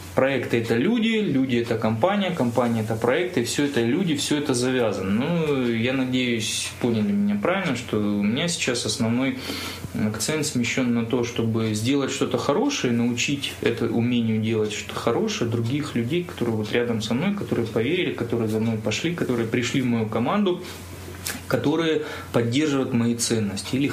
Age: 20-39